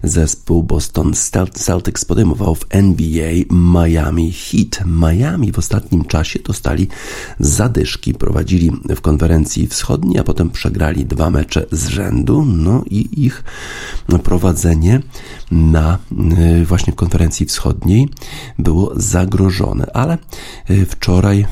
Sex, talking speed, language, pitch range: male, 105 wpm, Polish, 80-105 Hz